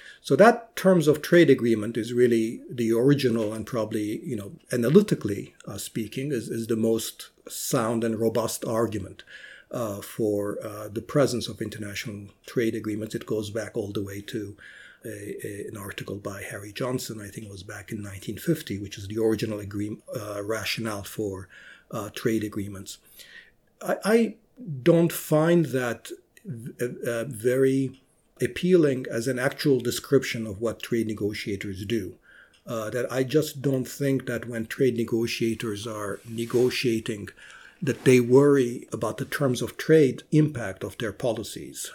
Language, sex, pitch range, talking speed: English, male, 110-140 Hz, 155 wpm